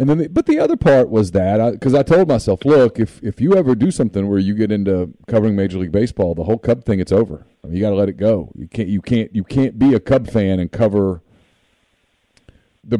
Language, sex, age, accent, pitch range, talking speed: English, male, 40-59, American, 95-125 Hz, 260 wpm